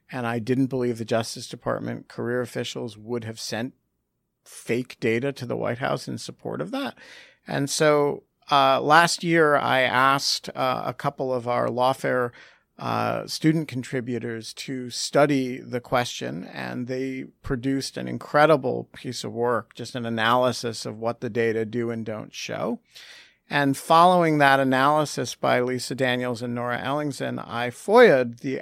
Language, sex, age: English, male, 50-69